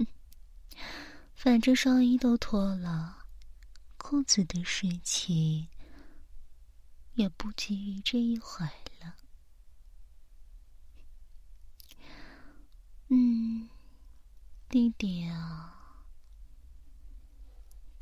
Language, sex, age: Chinese, female, 30-49